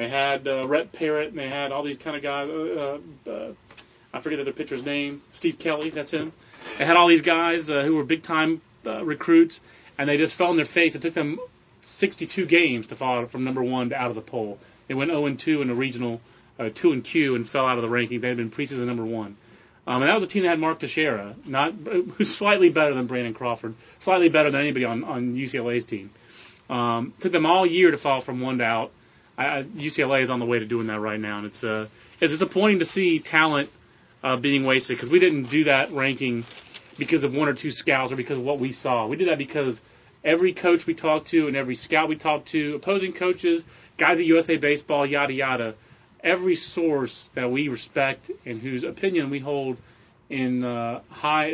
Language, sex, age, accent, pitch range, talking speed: English, male, 30-49, American, 125-165 Hz, 225 wpm